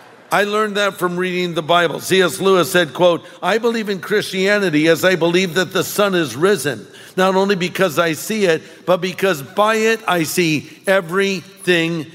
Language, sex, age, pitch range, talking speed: English, male, 50-69, 160-205 Hz, 180 wpm